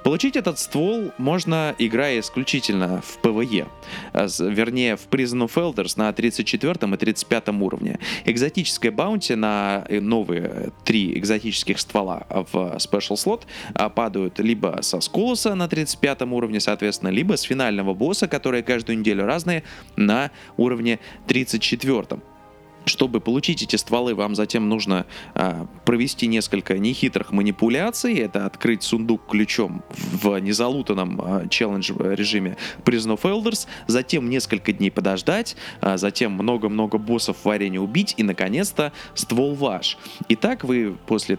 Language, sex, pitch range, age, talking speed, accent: Russian, male, 100-130 Hz, 20-39, 130 wpm, native